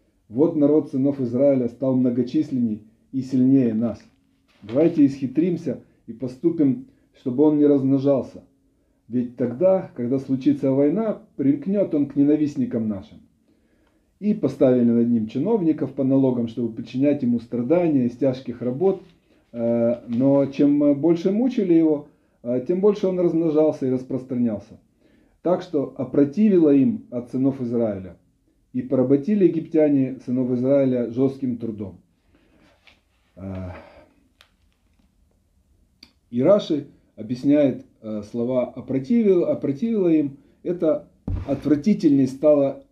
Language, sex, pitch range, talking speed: Russian, male, 120-150 Hz, 105 wpm